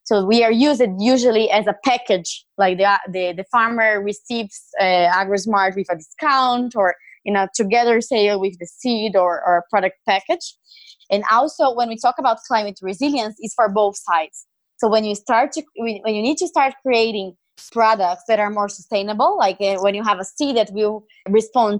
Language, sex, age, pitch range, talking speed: English, female, 20-39, 200-240 Hz, 195 wpm